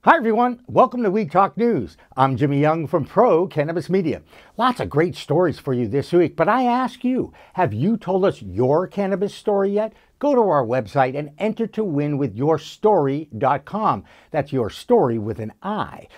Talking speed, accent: 185 wpm, American